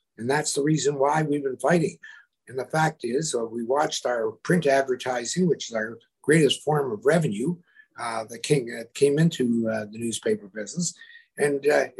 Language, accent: English, American